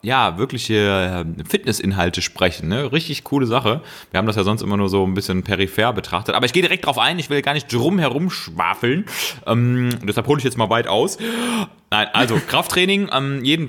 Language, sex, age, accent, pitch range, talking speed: German, male, 30-49, German, 95-125 Hz, 195 wpm